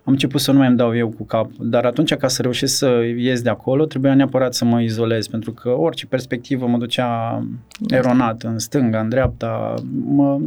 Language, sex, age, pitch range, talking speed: Romanian, male, 20-39, 115-135 Hz, 200 wpm